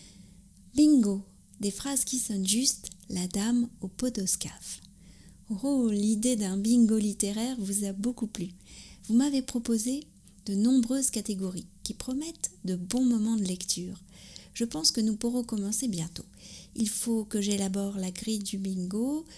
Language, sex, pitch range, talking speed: French, female, 195-240 Hz, 145 wpm